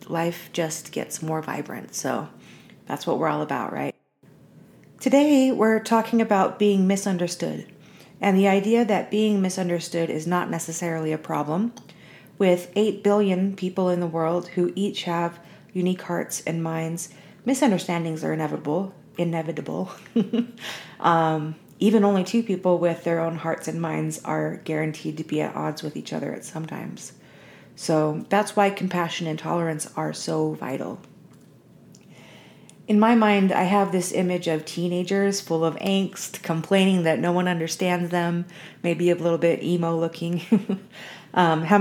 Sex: female